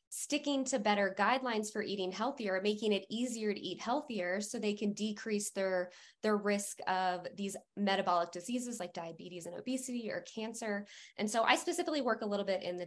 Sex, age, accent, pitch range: female, 20-39, American, 185-235 Hz